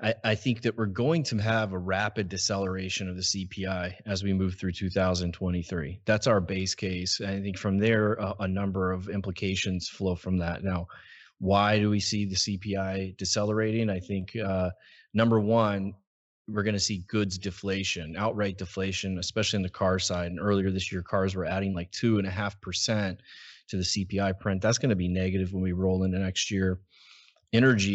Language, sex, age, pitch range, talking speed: English, male, 30-49, 95-105 Hz, 185 wpm